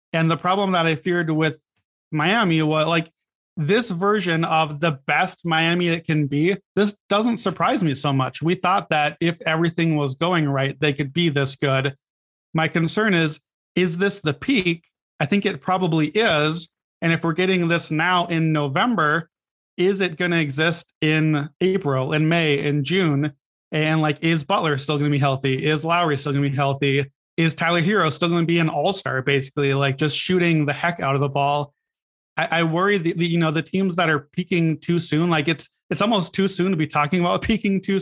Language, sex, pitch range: English, male, 145-175 Hz